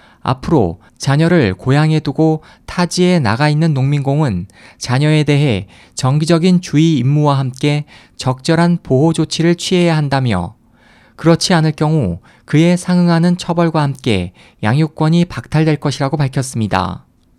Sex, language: male, Korean